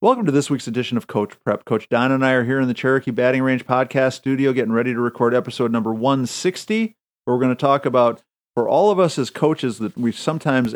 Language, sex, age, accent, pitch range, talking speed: English, male, 50-69, American, 105-130 Hz, 240 wpm